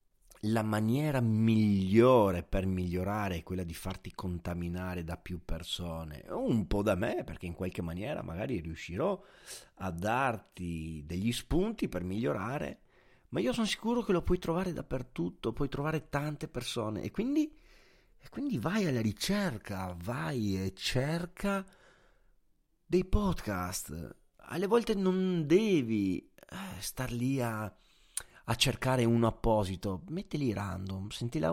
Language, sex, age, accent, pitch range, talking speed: Italian, male, 40-59, native, 90-125 Hz, 135 wpm